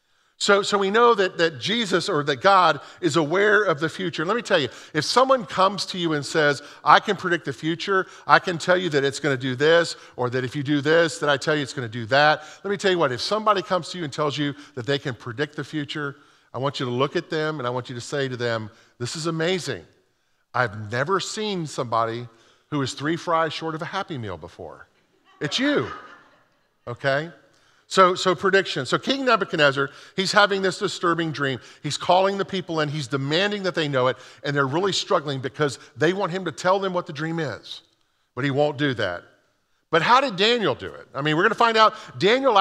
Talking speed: 230 wpm